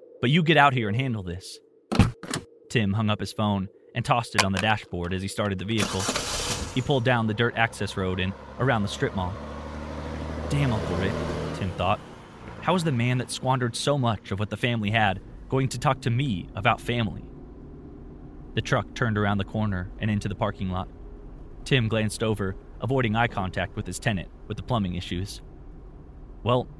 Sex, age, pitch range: male, 20-39, 95-130 Hz